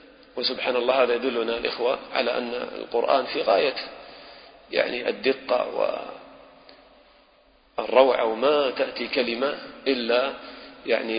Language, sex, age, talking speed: English, male, 40-59, 95 wpm